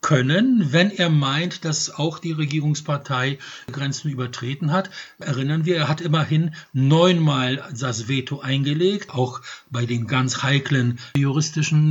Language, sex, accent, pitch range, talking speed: English, male, German, 130-165 Hz, 130 wpm